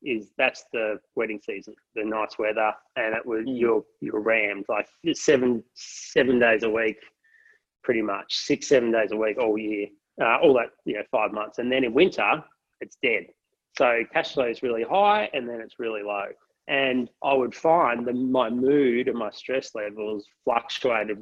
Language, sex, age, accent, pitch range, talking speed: English, male, 30-49, Australian, 110-130 Hz, 185 wpm